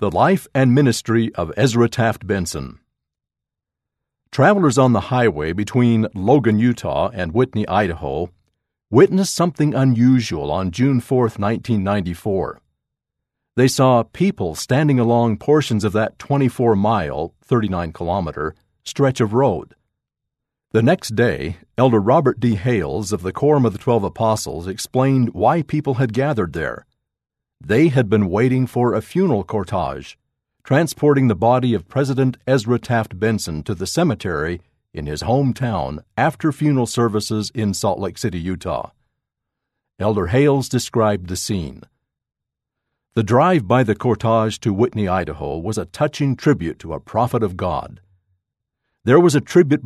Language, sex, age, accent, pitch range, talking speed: English, male, 50-69, American, 100-130 Hz, 135 wpm